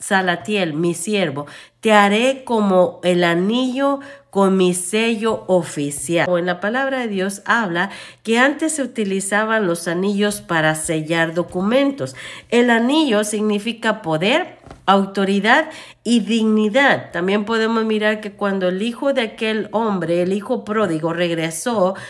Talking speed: 130 wpm